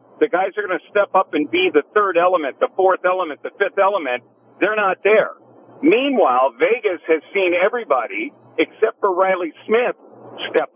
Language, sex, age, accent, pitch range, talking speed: English, male, 50-69, American, 150-210 Hz, 175 wpm